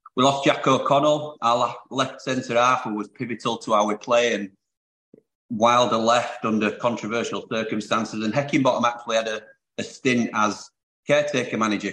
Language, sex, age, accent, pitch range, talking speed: English, male, 30-49, British, 105-130 Hz, 150 wpm